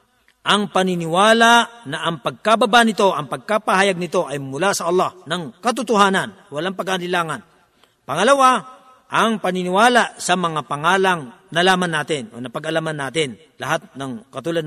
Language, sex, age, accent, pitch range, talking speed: Filipino, male, 50-69, native, 155-210 Hz, 125 wpm